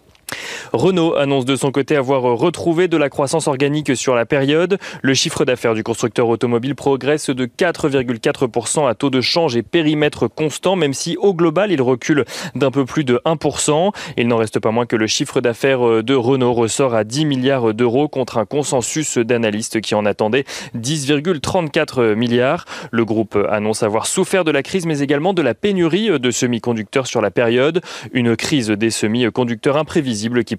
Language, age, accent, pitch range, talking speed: French, 20-39, French, 120-155 Hz, 175 wpm